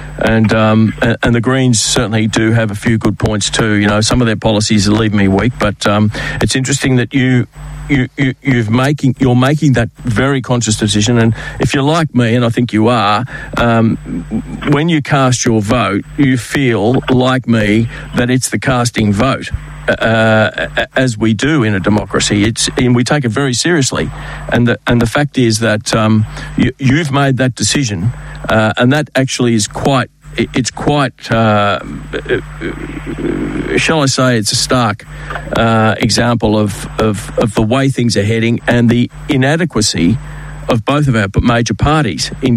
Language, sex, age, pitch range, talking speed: English, male, 50-69, 110-135 Hz, 175 wpm